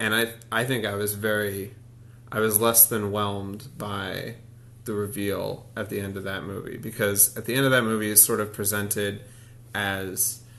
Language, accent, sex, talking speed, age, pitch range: English, American, male, 185 wpm, 30-49, 105-120 Hz